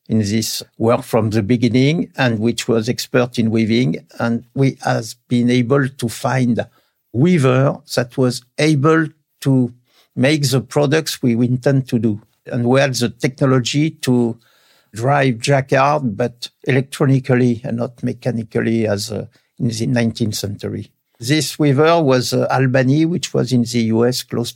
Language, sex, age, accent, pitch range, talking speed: French, male, 60-79, French, 115-135 Hz, 155 wpm